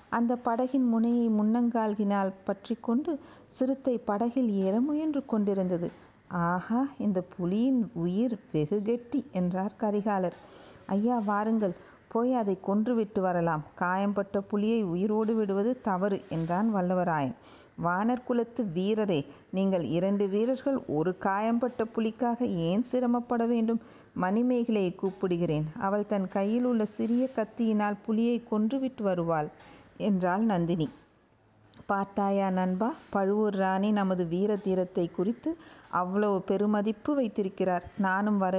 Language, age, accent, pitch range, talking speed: Tamil, 50-69, native, 185-230 Hz, 105 wpm